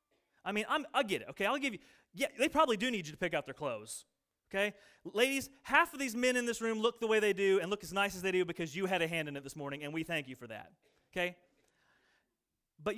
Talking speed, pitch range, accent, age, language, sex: 270 wpm, 165-225 Hz, American, 30-49, English, male